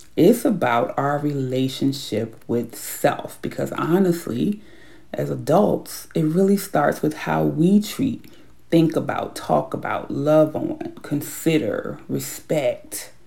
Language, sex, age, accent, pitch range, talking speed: English, female, 30-49, American, 135-180 Hz, 115 wpm